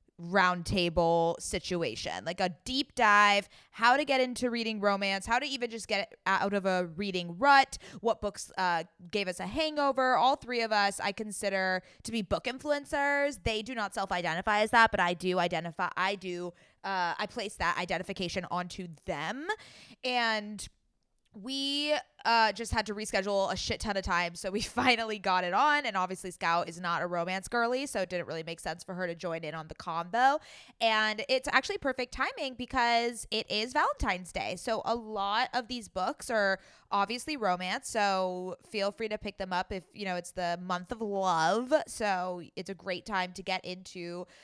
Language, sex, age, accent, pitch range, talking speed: English, female, 20-39, American, 180-235 Hz, 190 wpm